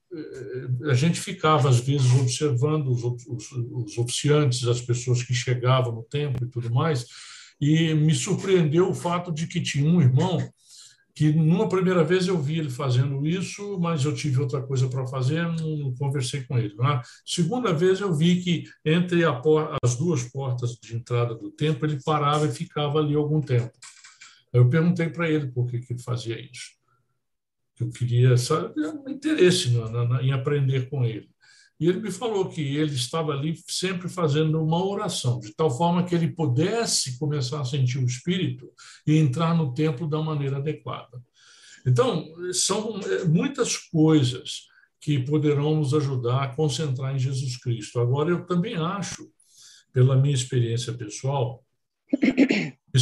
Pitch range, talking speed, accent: 125-165 Hz, 165 wpm, Brazilian